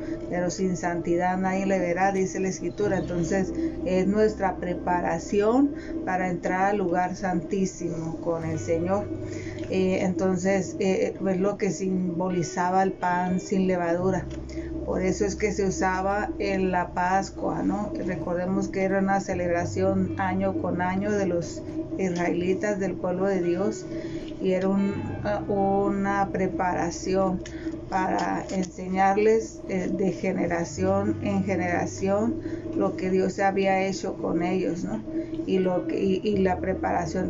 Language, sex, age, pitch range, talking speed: Spanish, female, 30-49, 175-195 Hz, 130 wpm